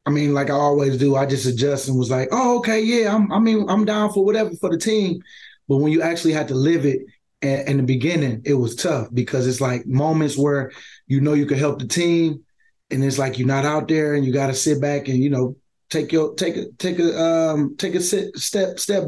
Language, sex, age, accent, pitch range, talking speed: English, male, 20-39, American, 140-175 Hz, 250 wpm